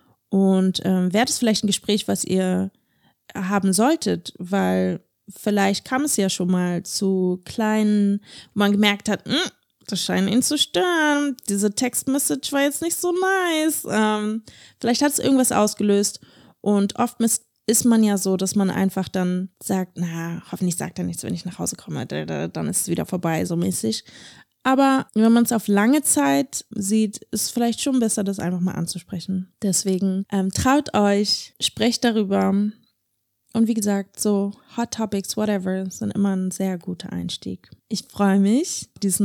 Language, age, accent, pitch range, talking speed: German, 20-39, German, 190-235 Hz, 170 wpm